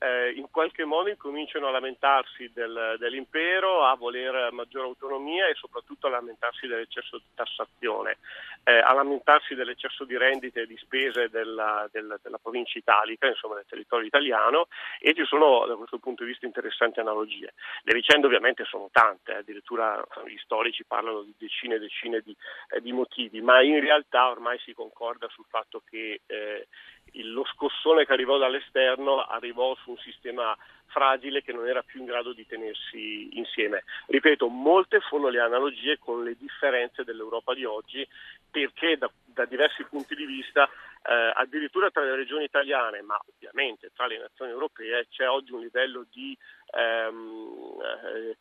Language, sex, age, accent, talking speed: Italian, male, 40-59, native, 160 wpm